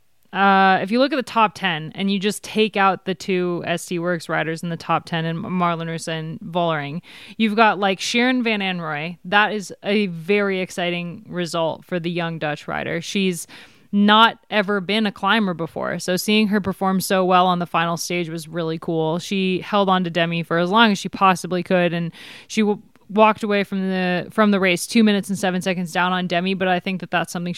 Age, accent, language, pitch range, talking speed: 20-39, American, English, 175-205 Hz, 215 wpm